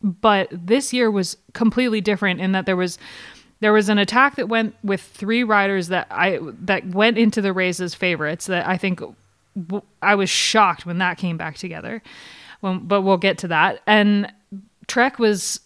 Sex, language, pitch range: female, English, 185-220 Hz